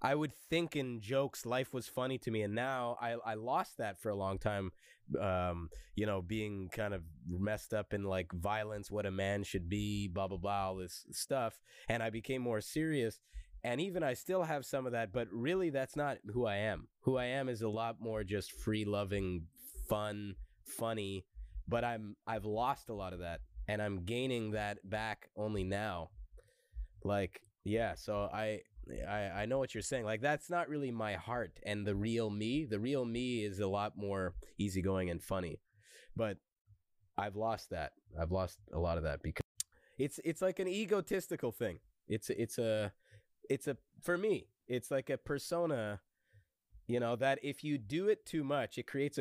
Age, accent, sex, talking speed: 20-39, American, male, 190 wpm